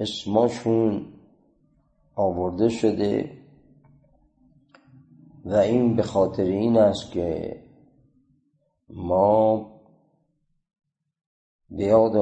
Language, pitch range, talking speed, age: Persian, 90-145 Hz, 60 wpm, 50-69